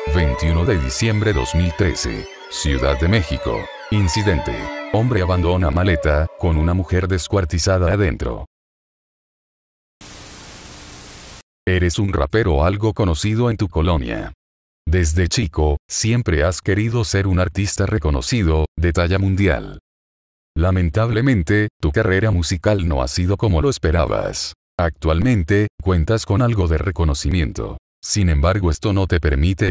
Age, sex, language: 40-59, male, Spanish